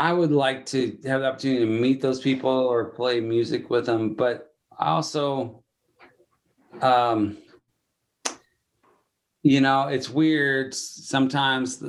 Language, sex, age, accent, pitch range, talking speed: English, male, 30-49, American, 105-130 Hz, 120 wpm